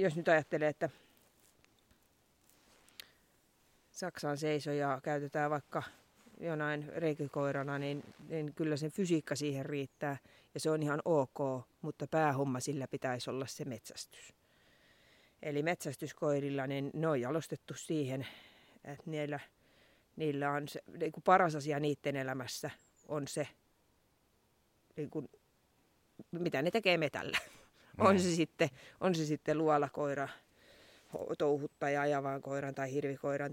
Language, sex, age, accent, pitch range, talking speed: Finnish, female, 30-49, native, 140-160 Hz, 120 wpm